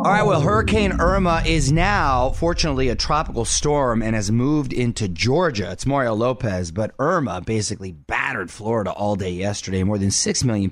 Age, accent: 30-49, American